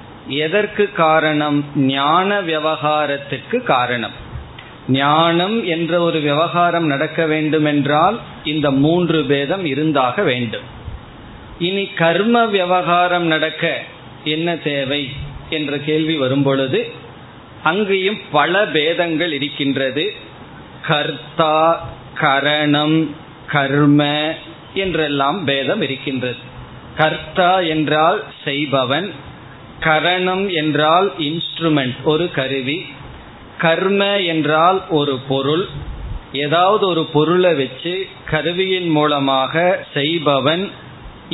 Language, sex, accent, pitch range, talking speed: Tamil, male, native, 140-170 Hz, 80 wpm